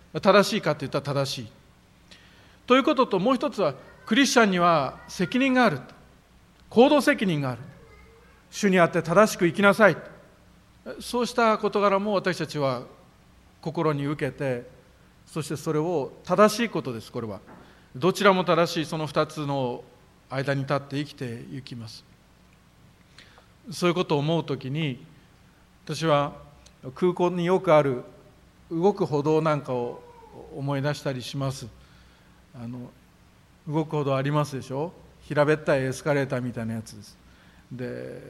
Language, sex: Japanese, male